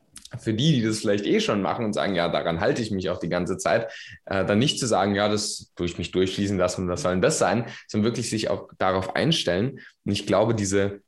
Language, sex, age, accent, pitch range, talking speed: German, male, 20-39, German, 85-110 Hz, 255 wpm